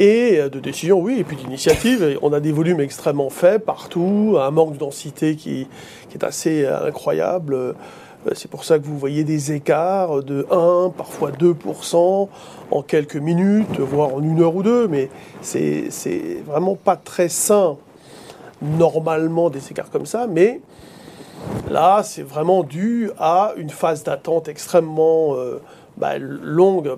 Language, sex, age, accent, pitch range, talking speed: French, male, 40-59, French, 150-195 Hz, 155 wpm